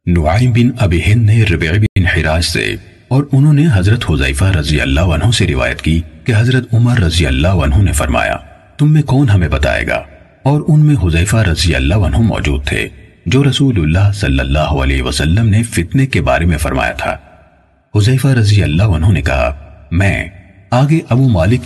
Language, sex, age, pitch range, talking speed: Urdu, male, 40-59, 80-115 Hz, 90 wpm